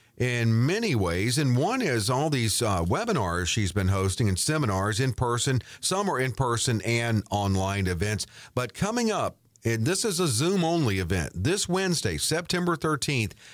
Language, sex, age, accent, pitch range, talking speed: English, male, 50-69, American, 105-145 Hz, 165 wpm